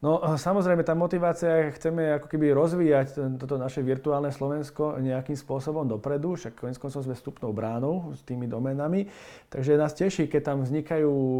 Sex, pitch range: male, 130-150 Hz